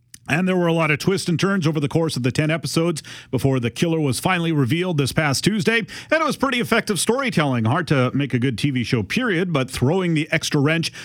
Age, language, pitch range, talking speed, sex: 40-59, English, 120-155 Hz, 240 wpm, male